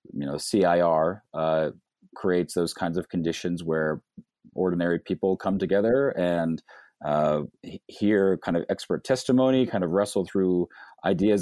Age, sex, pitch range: 40-59, male, 80-100 Hz